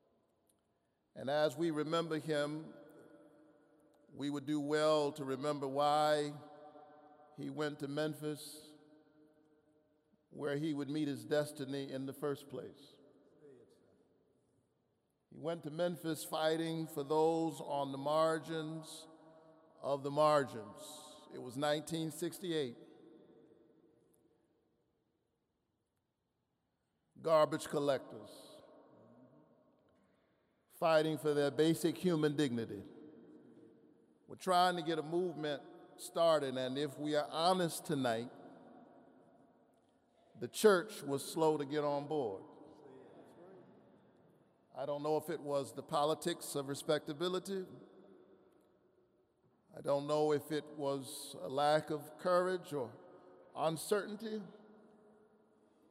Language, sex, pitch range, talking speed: English, male, 145-160 Hz, 100 wpm